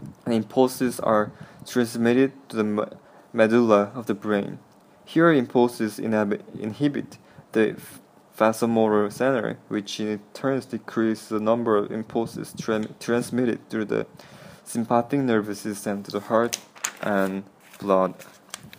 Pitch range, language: 100-120 Hz, English